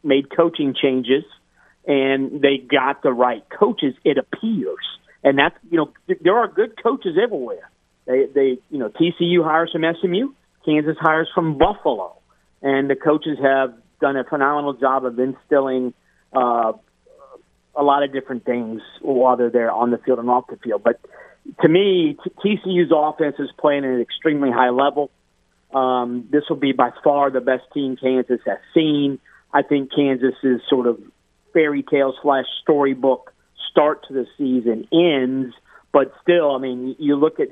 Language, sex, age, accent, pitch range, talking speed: English, male, 50-69, American, 130-155 Hz, 165 wpm